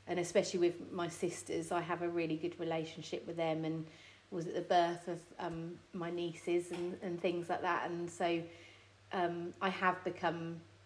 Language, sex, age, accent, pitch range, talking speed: English, female, 30-49, British, 165-180 Hz, 180 wpm